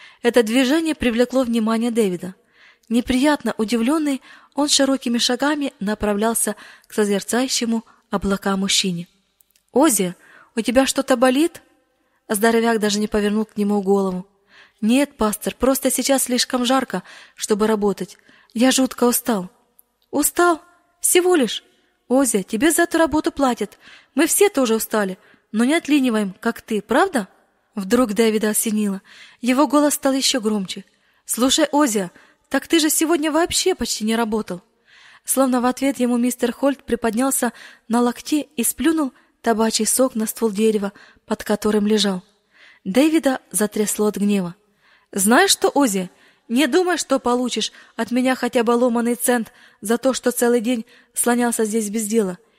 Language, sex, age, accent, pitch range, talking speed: Russian, female, 20-39, native, 215-270 Hz, 135 wpm